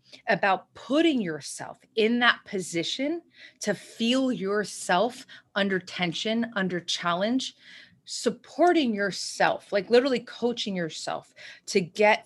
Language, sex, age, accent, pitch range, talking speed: English, female, 30-49, American, 175-230 Hz, 105 wpm